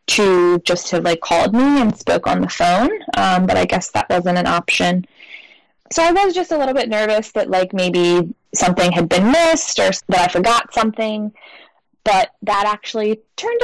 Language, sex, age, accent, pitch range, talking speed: English, female, 10-29, American, 180-240 Hz, 190 wpm